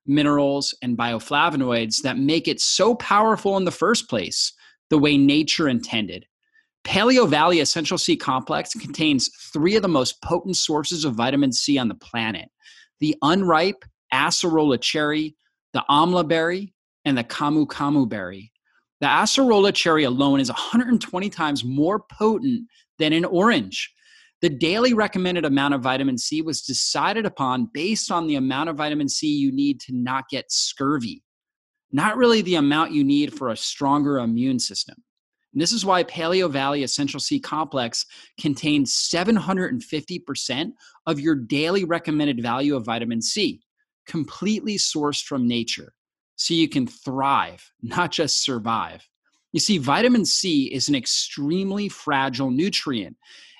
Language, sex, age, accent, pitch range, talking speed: English, male, 30-49, American, 140-220 Hz, 145 wpm